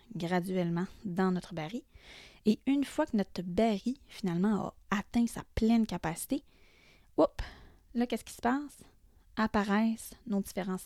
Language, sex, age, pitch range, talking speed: French, female, 20-39, 185-230 Hz, 140 wpm